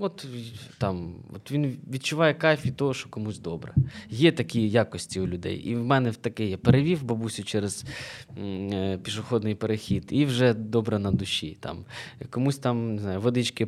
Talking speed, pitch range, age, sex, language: 175 wpm, 110-140 Hz, 20-39, male, Ukrainian